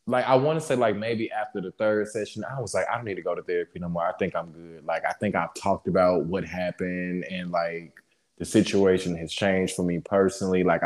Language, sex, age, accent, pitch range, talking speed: English, male, 20-39, American, 90-120 Hz, 250 wpm